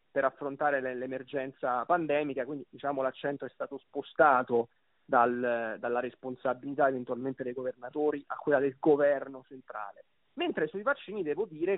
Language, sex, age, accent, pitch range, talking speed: Italian, male, 30-49, native, 130-170 Hz, 125 wpm